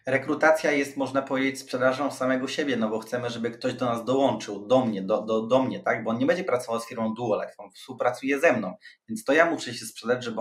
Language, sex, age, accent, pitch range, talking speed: Polish, male, 20-39, native, 125-175 Hz, 235 wpm